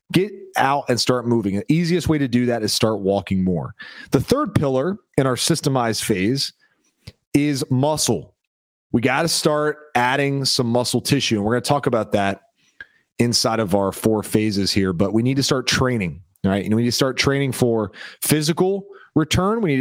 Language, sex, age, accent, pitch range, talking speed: English, male, 30-49, American, 110-140 Hz, 190 wpm